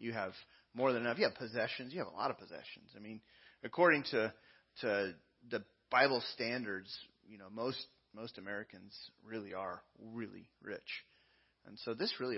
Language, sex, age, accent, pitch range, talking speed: English, male, 30-49, American, 105-135 Hz, 170 wpm